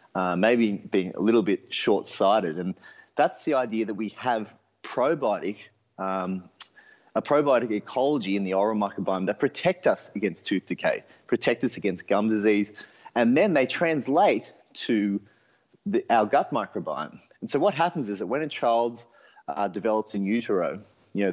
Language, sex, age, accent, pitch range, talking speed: English, male, 30-49, Australian, 100-115 Hz, 165 wpm